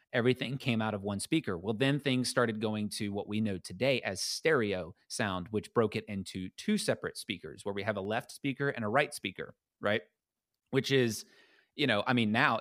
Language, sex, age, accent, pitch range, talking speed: English, male, 30-49, American, 105-135 Hz, 210 wpm